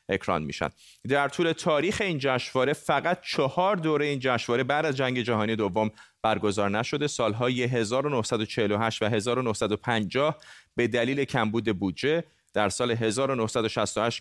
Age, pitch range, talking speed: 30-49, 110-145 Hz, 125 wpm